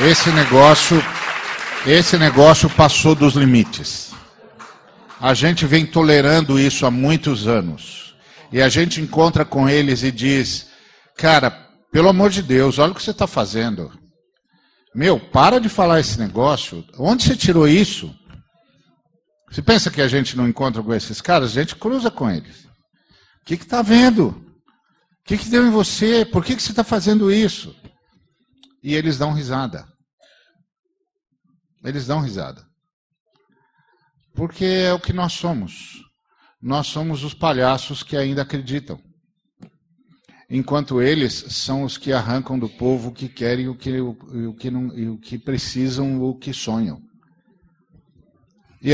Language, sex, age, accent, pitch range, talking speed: Portuguese, male, 50-69, Brazilian, 130-170 Hz, 140 wpm